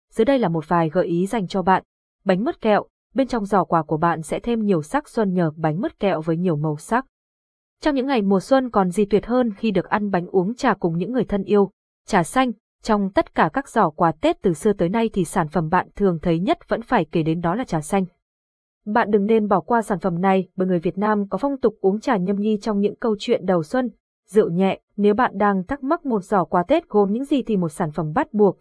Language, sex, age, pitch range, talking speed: Vietnamese, female, 20-39, 180-225 Hz, 260 wpm